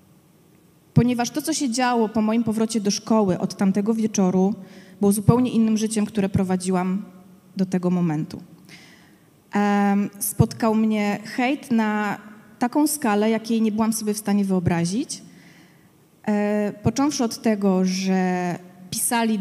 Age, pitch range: 20-39, 185-225 Hz